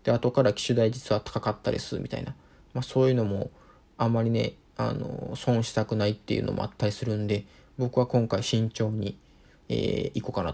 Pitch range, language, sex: 115-145 Hz, Japanese, male